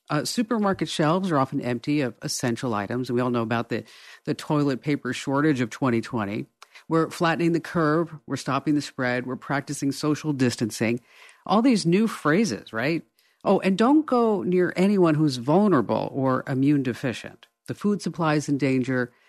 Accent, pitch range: American, 125-170 Hz